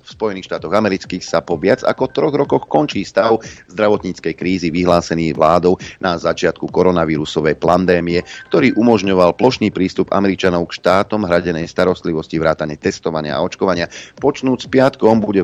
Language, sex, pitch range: Slovak, male, 85-115 Hz